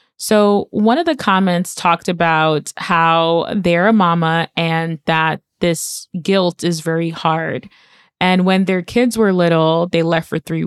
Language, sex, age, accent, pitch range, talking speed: English, female, 20-39, American, 175-215 Hz, 155 wpm